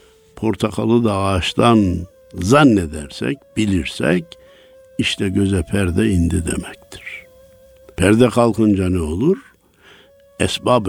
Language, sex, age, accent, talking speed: Turkish, male, 60-79, native, 85 wpm